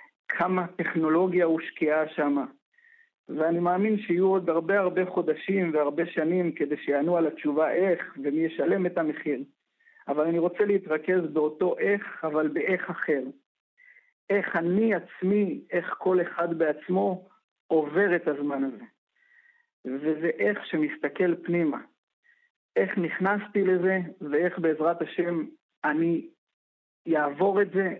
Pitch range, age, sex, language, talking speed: 155-190 Hz, 50-69, male, Hebrew, 120 wpm